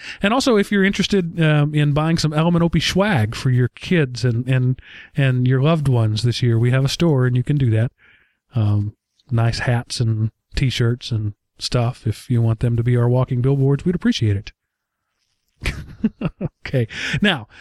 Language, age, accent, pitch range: English, 40-59, American, 125-165 Hz